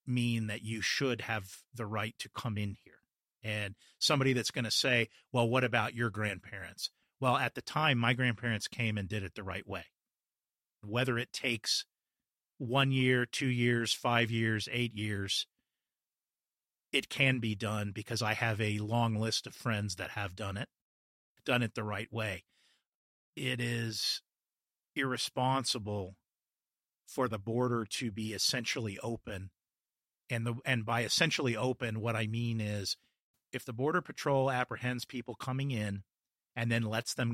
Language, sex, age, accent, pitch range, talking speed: English, male, 40-59, American, 105-125 Hz, 160 wpm